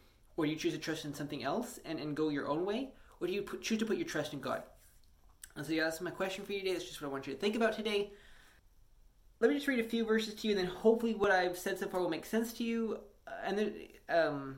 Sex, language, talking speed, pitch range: male, English, 275 wpm, 160-200 Hz